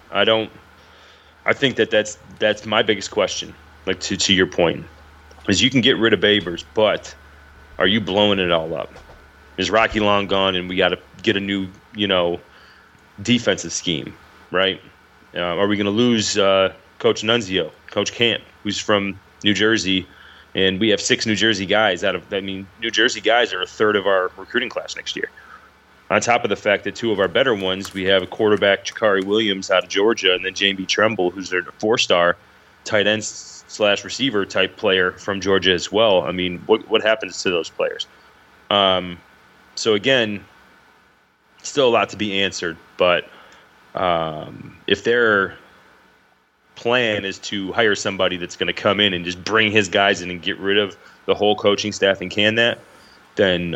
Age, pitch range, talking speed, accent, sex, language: 30-49, 90-105 Hz, 190 wpm, American, male, English